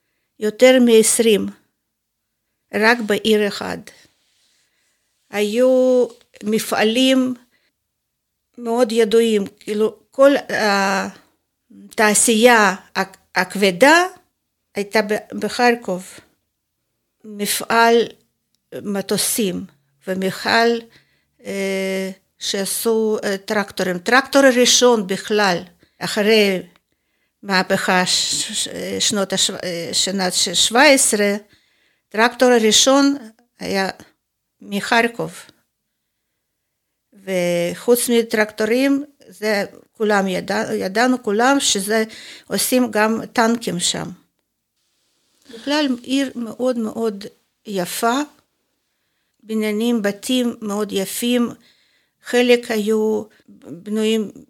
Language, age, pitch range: Hebrew, 50-69, 200-245 Hz